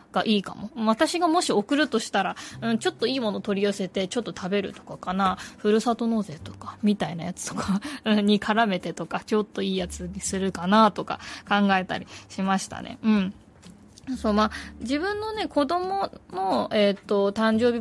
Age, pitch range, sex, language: 20-39, 195-240 Hz, female, Japanese